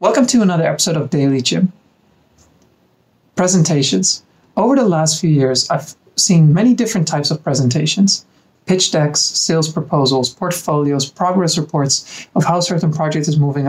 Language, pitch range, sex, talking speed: English, 145-190 Hz, male, 145 wpm